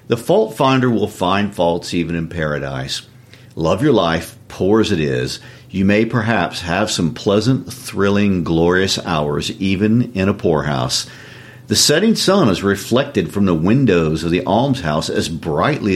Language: English